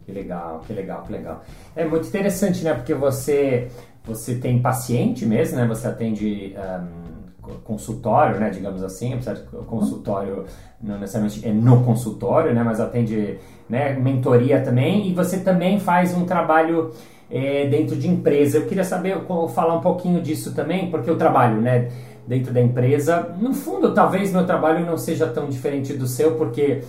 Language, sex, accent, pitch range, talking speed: Portuguese, male, Brazilian, 125-175 Hz, 165 wpm